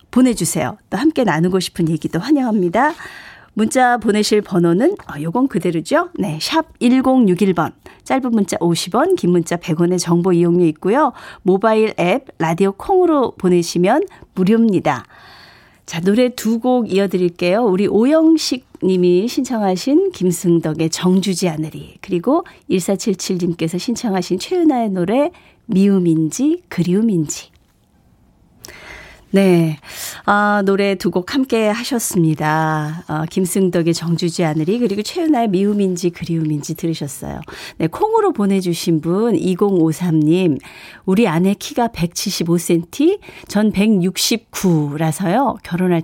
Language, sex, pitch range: Korean, female, 175-240 Hz